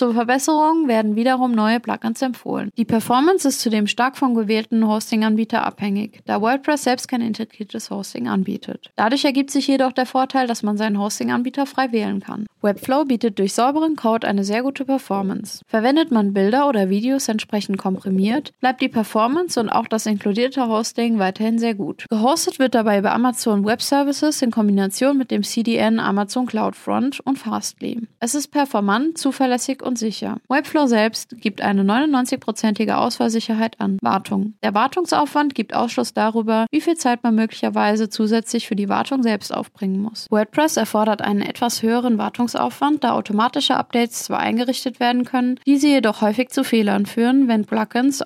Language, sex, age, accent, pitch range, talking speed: German, female, 20-39, German, 215-260 Hz, 165 wpm